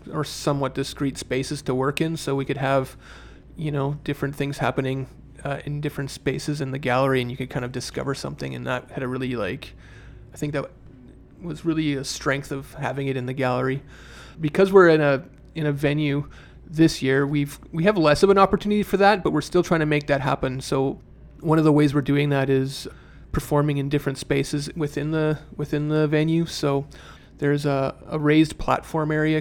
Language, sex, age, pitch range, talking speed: English, male, 30-49, 135-150 Hz, 205 wpm